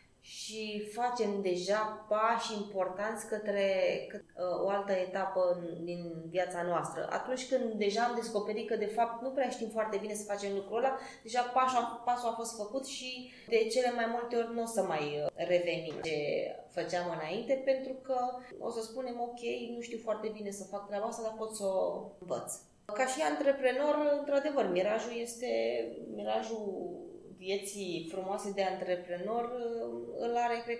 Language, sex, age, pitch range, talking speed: Romanian, female, 20-39, 180-230 Hz, 160 wpm